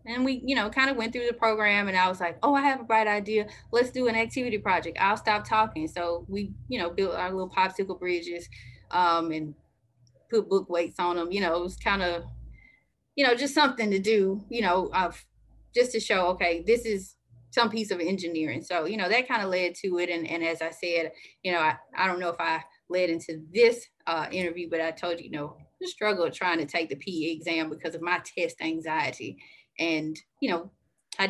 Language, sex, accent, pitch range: English, female, American, 165-210 Hz